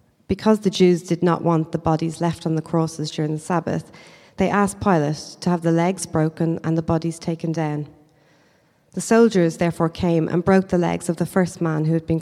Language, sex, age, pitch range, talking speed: English, female, 30-49, 160-180 Hz, 210 wpm